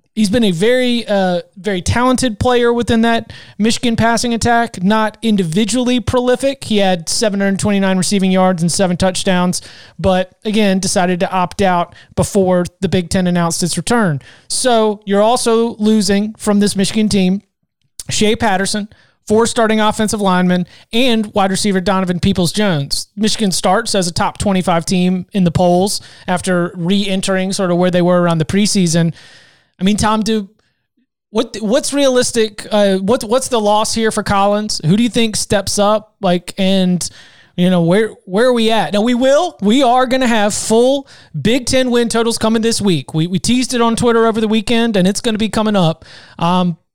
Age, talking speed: 30-49, 180 wpm